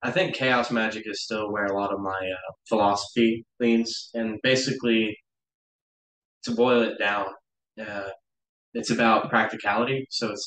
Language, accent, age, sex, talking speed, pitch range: English, American, 20-39, male, 150 wpm, 100-115 Hz